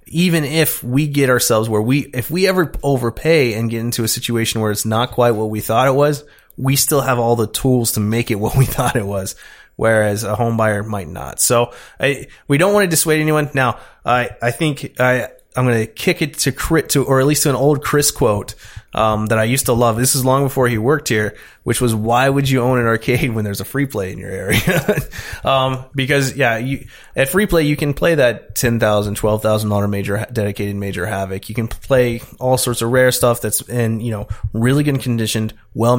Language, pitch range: English, 110-140 Hz